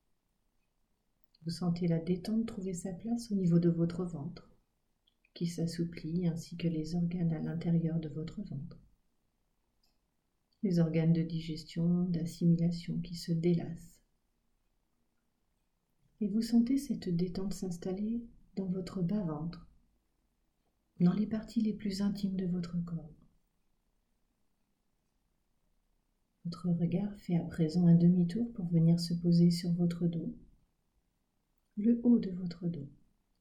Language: French